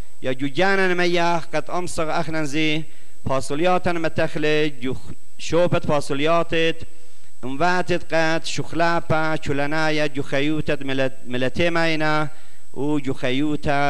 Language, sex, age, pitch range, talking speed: English, male, 50-69, 135-175 Hz, 105 wpm